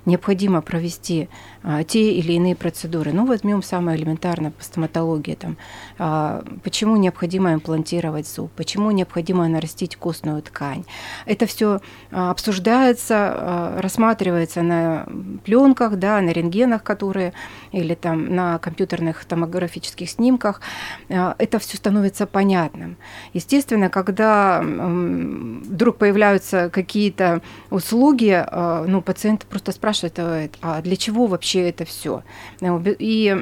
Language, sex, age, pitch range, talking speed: Russian, female, 30-49, 175-210 Hz, 120 wpm